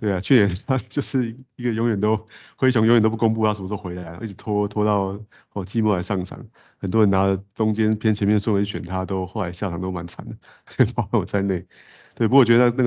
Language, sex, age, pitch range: Chinese, male, 30-49, 95-110 Hz